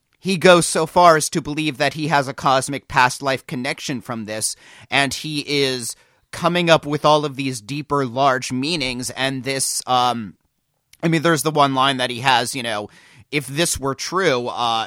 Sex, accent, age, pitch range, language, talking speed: male, American, 30-49, 125-150 Hz, English, 185 wpm